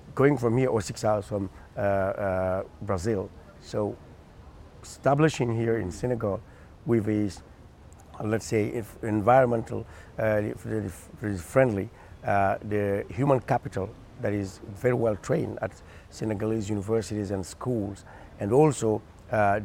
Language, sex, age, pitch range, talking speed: English, male, 60-79, 100-120 Hz, 130 wpm